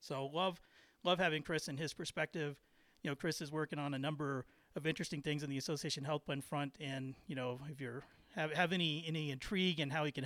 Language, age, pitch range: English, 30-49, 135-160 Hz